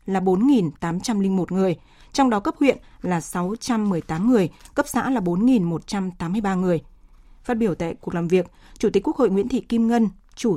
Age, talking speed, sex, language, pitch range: 20-39, 170 wpm, female, Vietnamese, 190-235 Hz